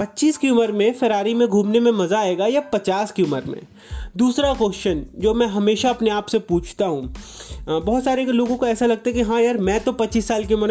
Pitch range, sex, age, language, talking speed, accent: 180-225 Hz, male, 30-49, Hindi, 230 wpm, native